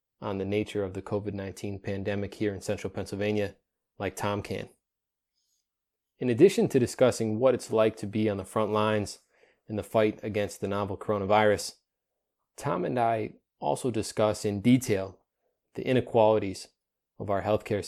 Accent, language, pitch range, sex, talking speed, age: American, English, 100-115 Hz, male, 160 wpm, 20-39